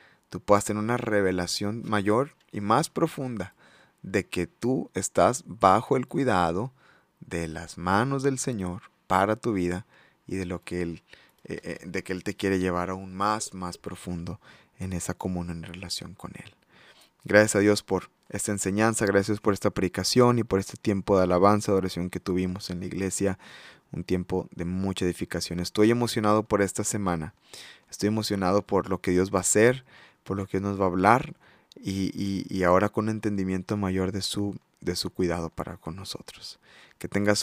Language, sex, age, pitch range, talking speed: Spanish, male, 20-39, 95-110 Hz, 185 wpm